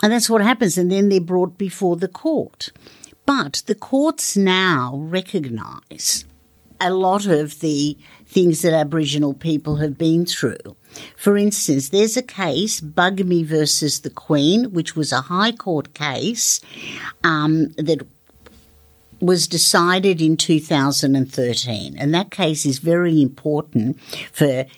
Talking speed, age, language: 135 wpm, 60-79, English